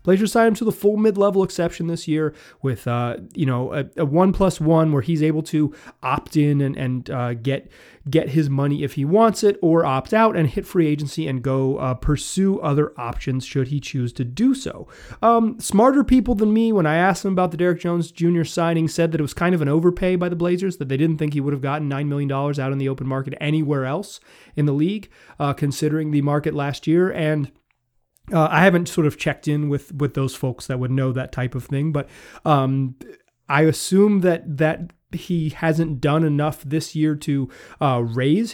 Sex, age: male, 30-49